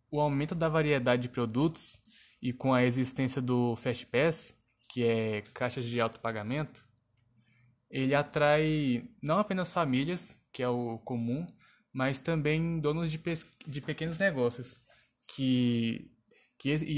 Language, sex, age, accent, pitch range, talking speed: Portuguese, male, 10-29, Brazilian, 125-155 Hz, 125 wpm